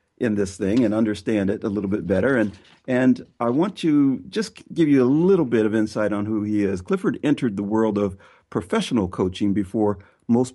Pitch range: 95-125 Hz